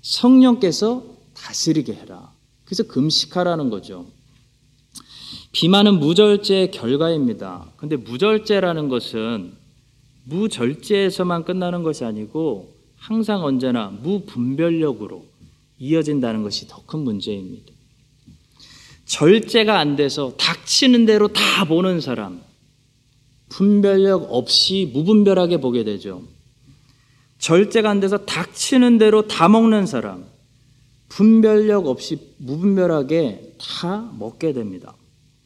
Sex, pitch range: male, 130-195 Hz